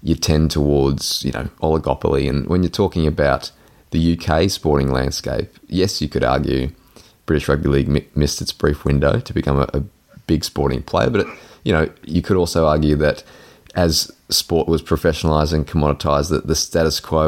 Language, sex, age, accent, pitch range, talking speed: English, male, 20-39, Australian, 75-85 Hz, 185 wpm